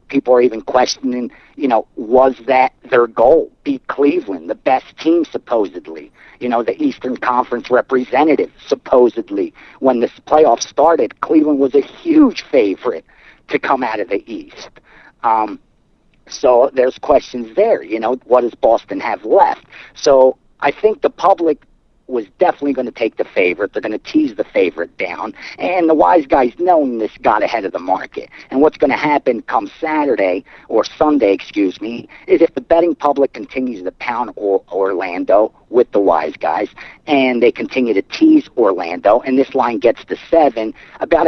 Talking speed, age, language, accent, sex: 170 wpm, 50-69, English, American, male